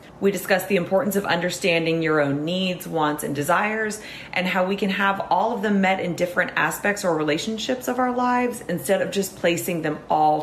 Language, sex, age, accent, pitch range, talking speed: English, female, 30-49, American, 155-200 Hz, 200 wpm